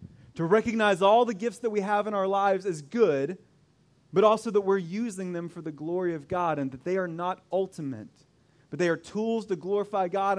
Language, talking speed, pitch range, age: English, 215 wpm, 150-210 Hz, 30-49